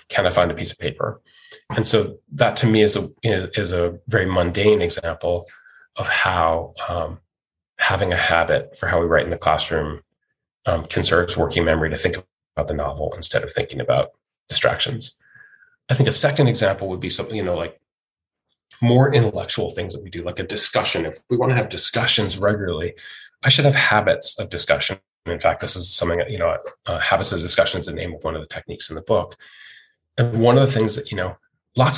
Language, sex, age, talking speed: English, male, 30-49, 210 wpm